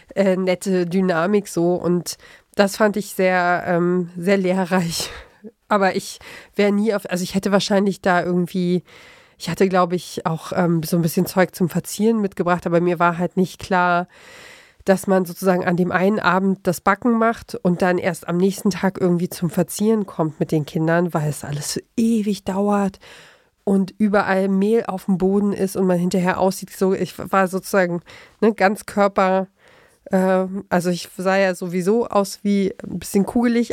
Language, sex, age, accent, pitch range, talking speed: German, female, 40-59, German, 180-205 Hz, 175 wpm